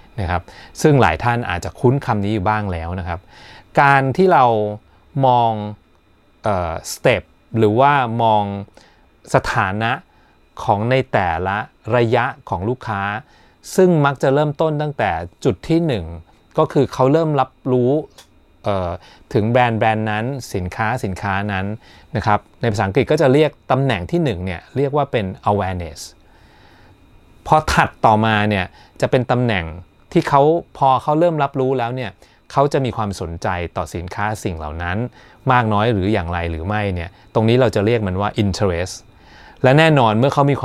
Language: Thai